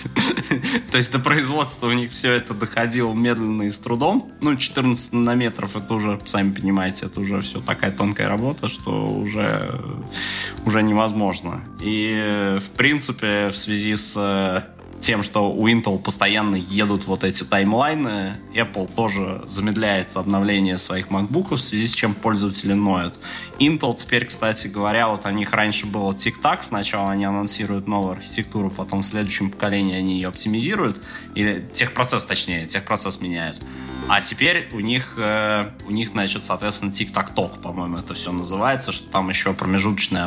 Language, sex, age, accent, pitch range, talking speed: Russian, male, 20-39, native, 95-110 Hz, 150 wpm